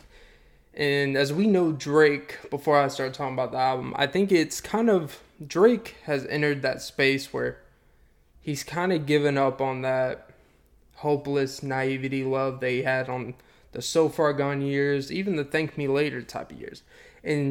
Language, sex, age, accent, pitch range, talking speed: English, male, 20-39, American, 130-150 Hz, 170 wpm